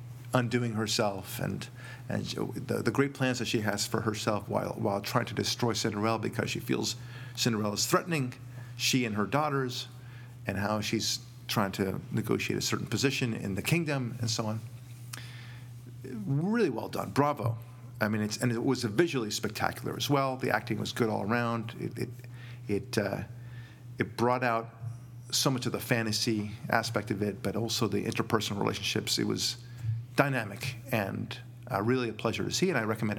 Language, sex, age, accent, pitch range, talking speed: English, male, 40-59, American, 115-125 Hz, 175 wpm